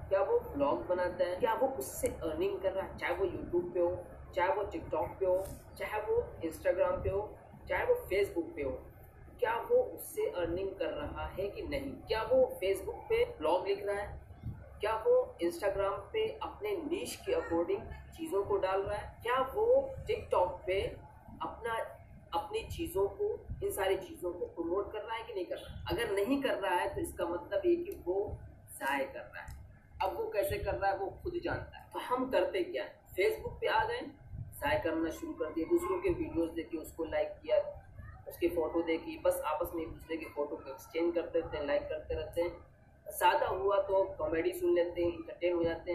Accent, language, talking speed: native, Hindi, 200 wpm